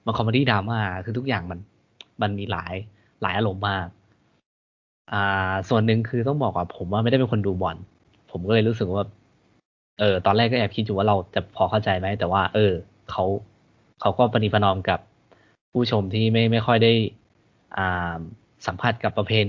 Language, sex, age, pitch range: Thai, male, 20-39, 100-120 Hz